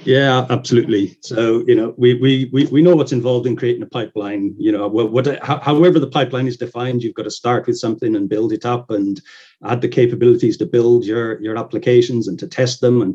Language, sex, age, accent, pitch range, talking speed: English, male, 40-59, British, 115-165 Hz, 220 wpm